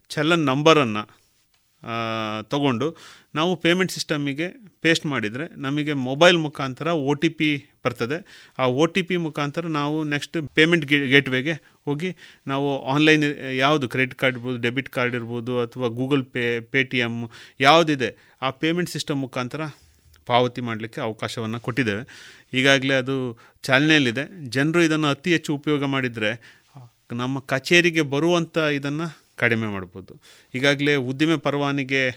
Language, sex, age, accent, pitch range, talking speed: Kannada, male, 30-49, native, 125-155 Hz, 125 wpm